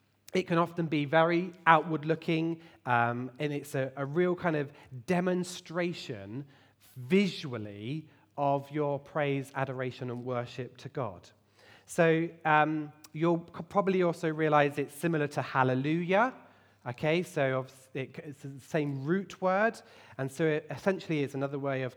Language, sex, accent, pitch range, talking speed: English, male, British, 125-175 Hz, 135 wpm